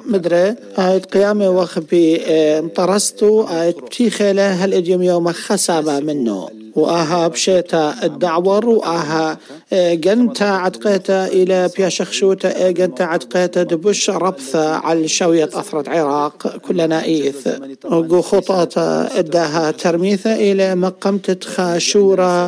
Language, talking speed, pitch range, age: English, 95 wpm, 165-195 Hz, 50-69